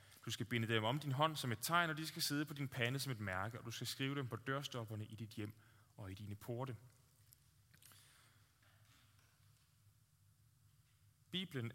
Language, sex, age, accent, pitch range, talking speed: Danish, male, 20-39, native, 110-130 Hz, 180 wpm